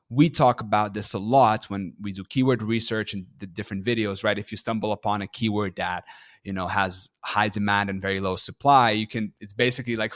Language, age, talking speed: English, 20-39, 220 wpm